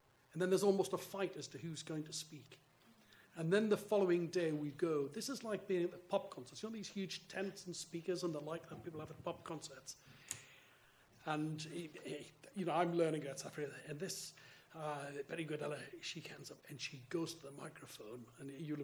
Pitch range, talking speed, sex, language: 150-190 Hz, 210 wpm, male, English